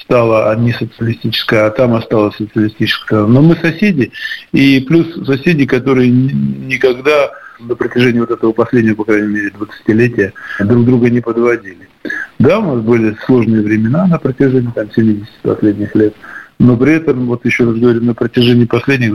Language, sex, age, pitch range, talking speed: Russian, male, 50-69, 105-125 Hz, 155 wpm